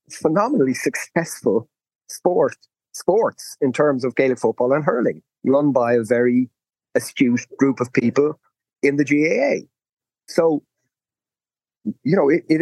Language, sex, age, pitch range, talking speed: English, male, 40-59, 125-175 Hz, 130 wpm